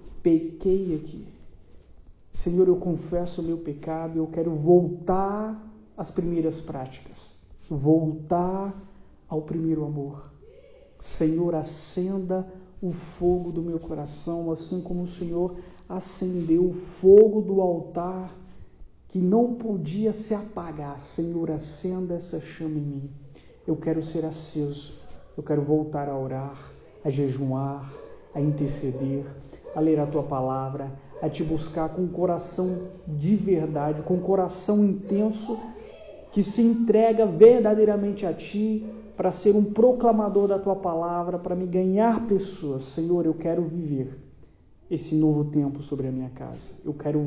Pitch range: 155-185 Hz